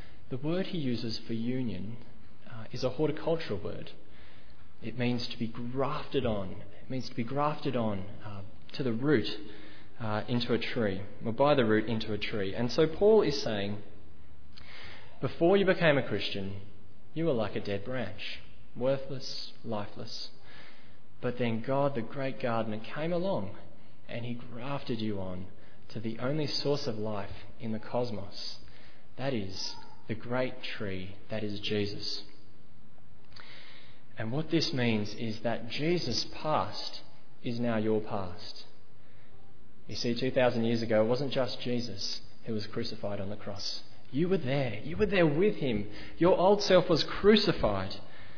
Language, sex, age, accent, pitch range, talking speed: English, male, 20-39, Australian, 105-135 Hz, 155 wpm